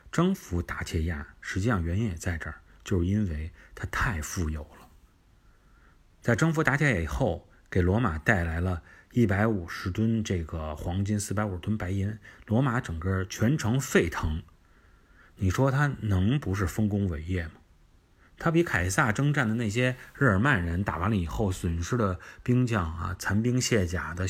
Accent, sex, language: native, male, Chinese